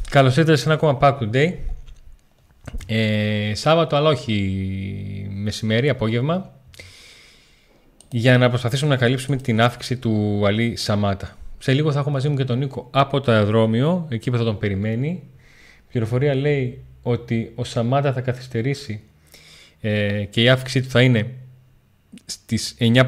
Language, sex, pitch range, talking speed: Greek, male, 105-130 Hz, 145 wpm